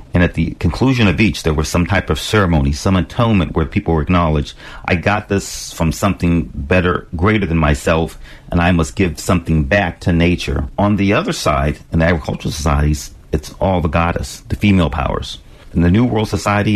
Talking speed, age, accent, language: 195 wpm, 40-59, American, English